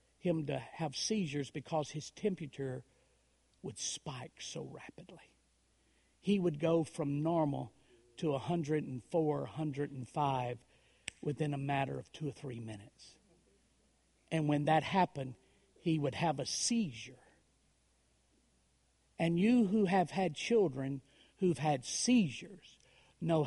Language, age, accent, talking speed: English, 50-69, American, 120 wpm